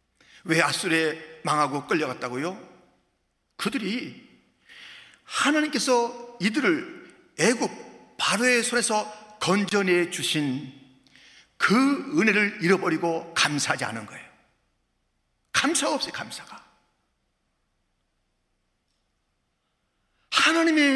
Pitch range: 145-235 Hz